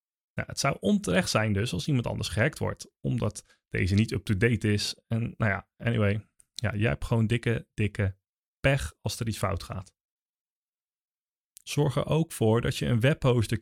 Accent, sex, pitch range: Dutch, male, 100-125 Hz